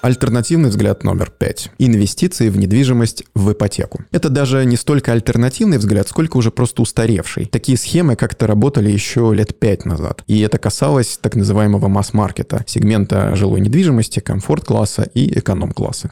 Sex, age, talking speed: male, 20-39, 145 wpm